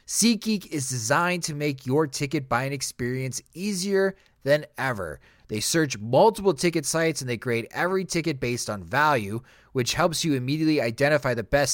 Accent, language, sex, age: American, English, male, 30-49